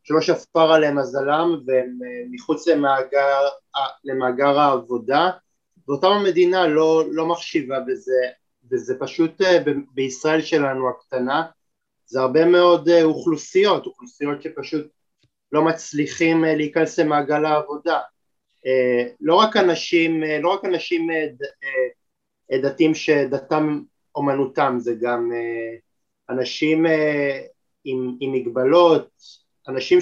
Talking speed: 90 wpm